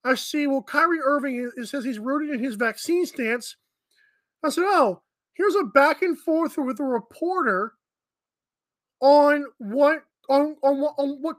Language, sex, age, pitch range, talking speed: English, male, 20-39, 235-300 Hz, 155 wpm